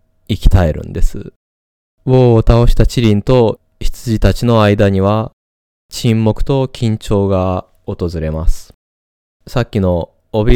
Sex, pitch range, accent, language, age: male, 85-110 Hz, native, Japanese, 20-39